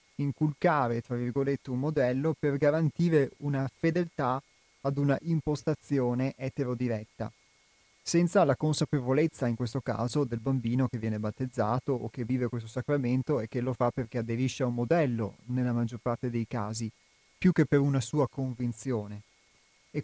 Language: Italian